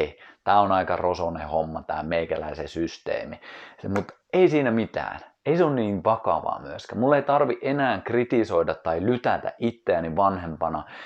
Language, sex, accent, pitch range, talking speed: Finnish, male, native, 85-120 Hz, 145 wpm